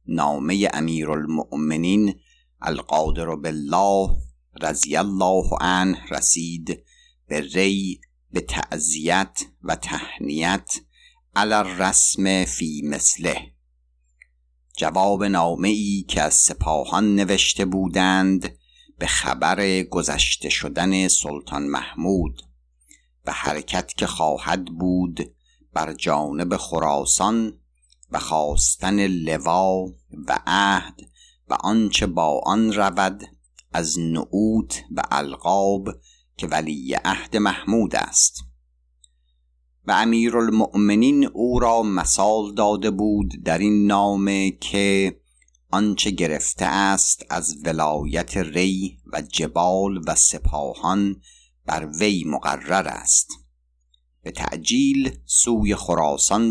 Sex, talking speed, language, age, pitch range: male, 95 wpm, Persian, 50-69, 70-100 Hz